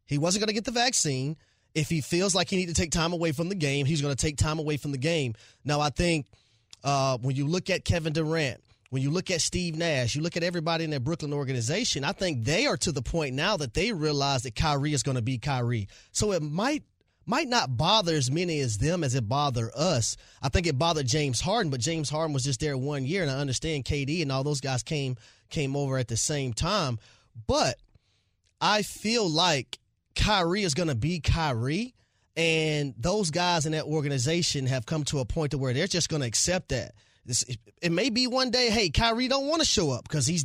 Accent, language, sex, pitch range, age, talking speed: American, English, male, 130-175 Hz, 30-49, 235 wpm